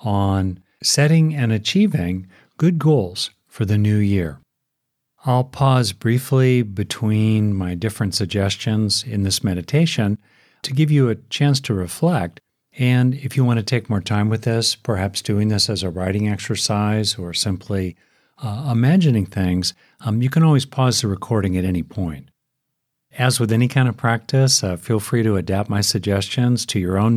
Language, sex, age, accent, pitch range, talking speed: English, male, 50-69, American, 100-125 Hz, 165 wpm